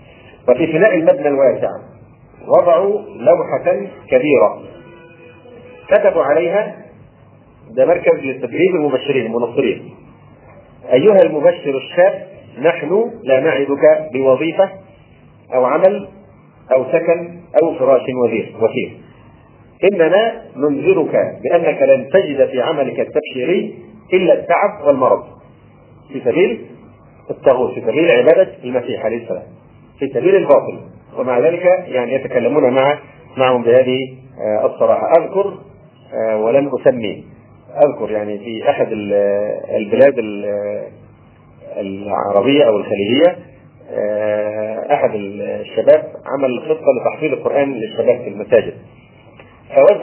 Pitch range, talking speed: 120-195 Hz, 100 wpm